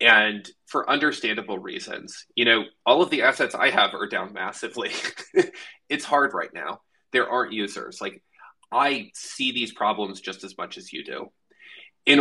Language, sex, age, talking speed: English, male, 20-39, 165 wpm